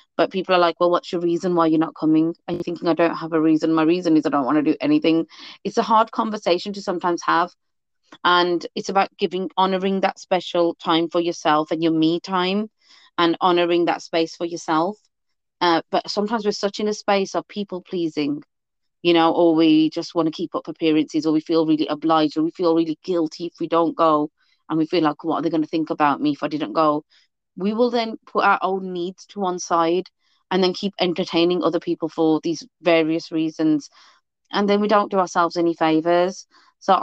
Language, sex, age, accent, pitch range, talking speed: English, female, 30-49, British, 160-185 Hz, 220 wpm